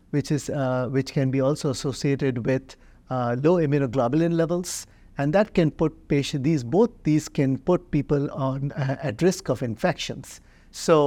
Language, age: English, 50-69